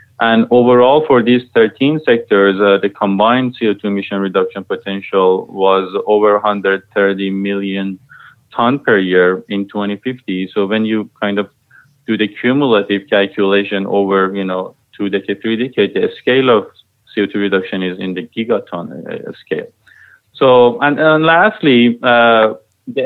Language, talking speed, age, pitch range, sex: English, 140 wpm, 30-49, 100-125 Hz, male